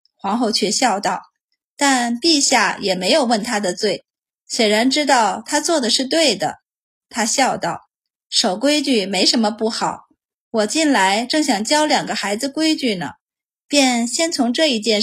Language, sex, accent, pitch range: Chinese, female, native, 220-290 Hz